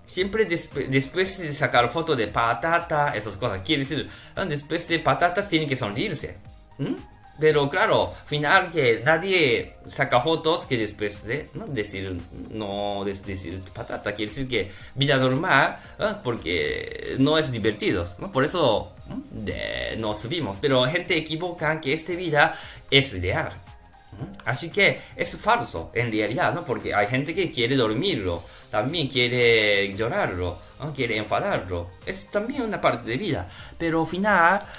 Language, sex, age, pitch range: Japanese, male, 20-39, 105-165 Hz